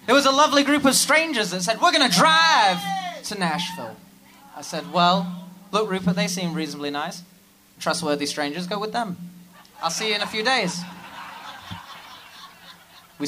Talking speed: 165 wpm